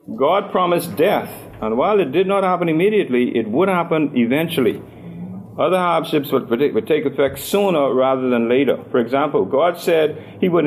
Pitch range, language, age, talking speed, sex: 145-205 Hz, English, 50-69, 170 wpm, male